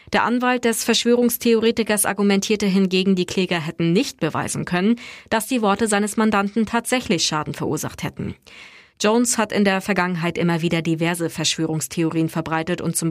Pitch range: 170-225 Hz